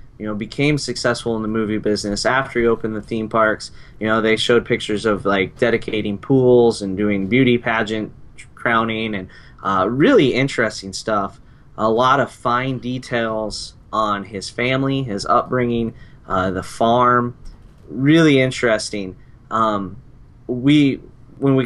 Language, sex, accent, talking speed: English, male, American, 145 wpm